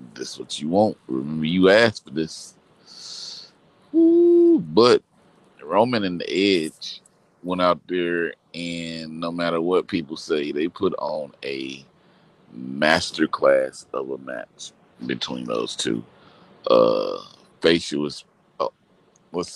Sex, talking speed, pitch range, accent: male, 125 wpm, 70-90 Hz, American